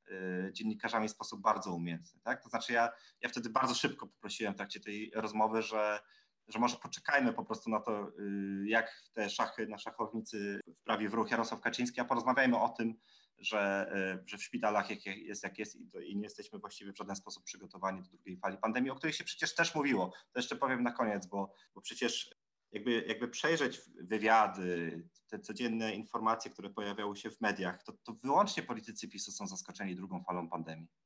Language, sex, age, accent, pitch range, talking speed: English, male, 30-49, Polish, 100-125 Hz, 190 wpm